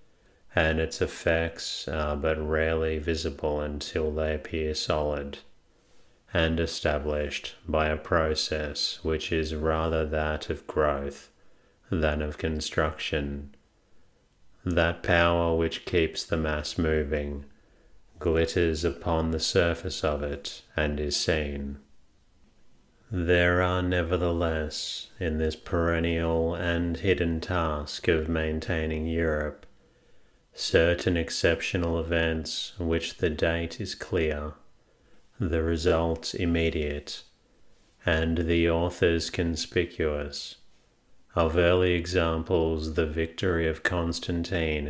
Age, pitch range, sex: 40-59, 75-85 Hz, male